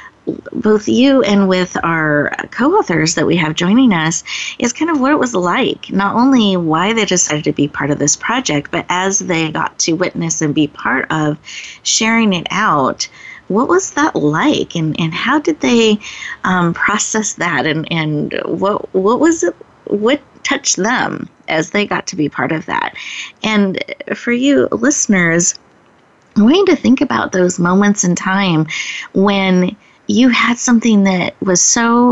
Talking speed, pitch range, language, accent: 170 wpm, 165-215 Hz, English, American